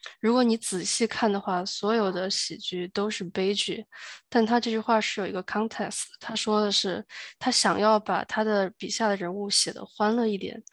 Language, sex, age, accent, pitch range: Chinese, female, 20-39, native, 195-220 Hz